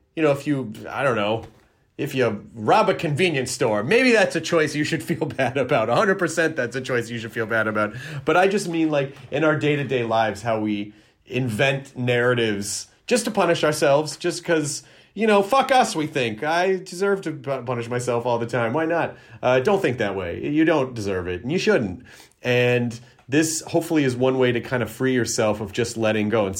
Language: English